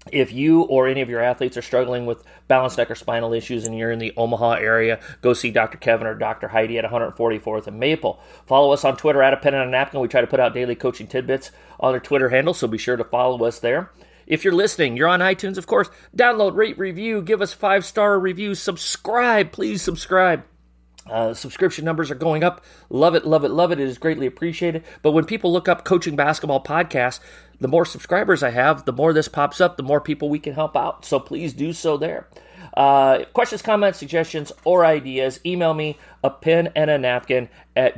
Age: 40-59